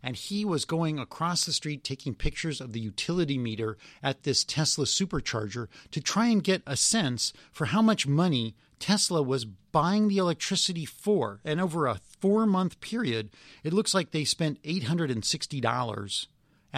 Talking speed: 155 wpm